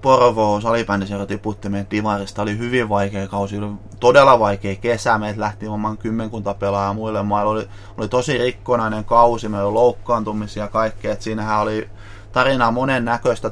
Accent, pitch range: native, 105-120 Hz